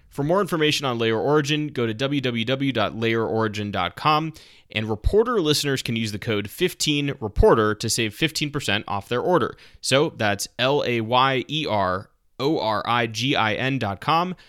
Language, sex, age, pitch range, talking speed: English, male, 20-39, 100-120 Hz, 110 wpm